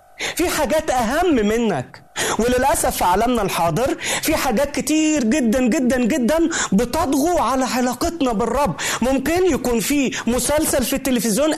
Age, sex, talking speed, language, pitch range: 30-49, male, 120 wpm, Arabic, 185-295 Hz